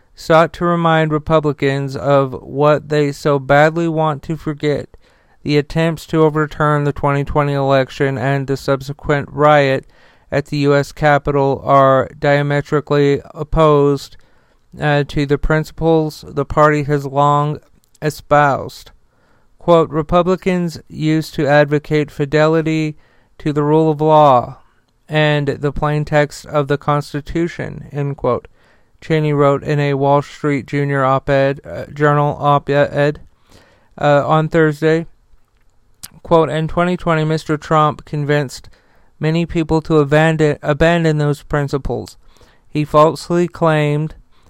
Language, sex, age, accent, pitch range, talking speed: English, male, 40-59, American, 140-155 Hz, 120 wpm